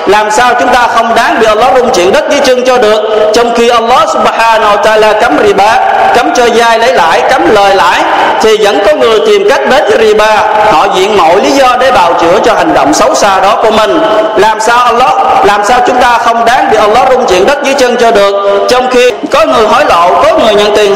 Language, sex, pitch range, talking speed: Vietnamese, male, 210-255 Hz, 240 wpm